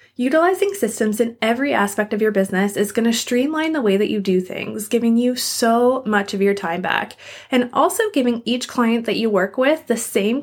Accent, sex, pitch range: American, female, 200-250 Hz